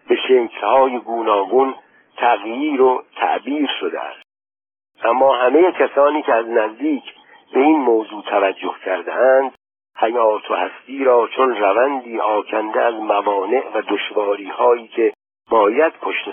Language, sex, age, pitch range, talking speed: Persian, male, 60-79, 110-160 Hz, 120 wpm